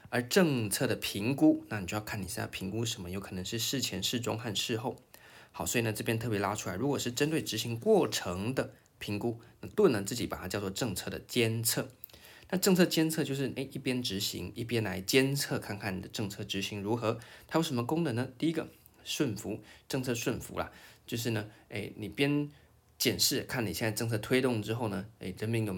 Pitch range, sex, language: 105-125 Hz, male, Chinese